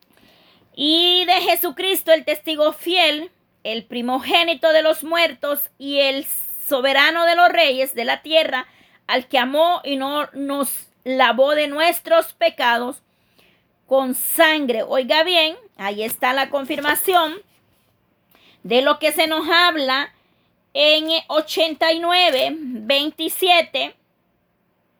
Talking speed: 115 wpm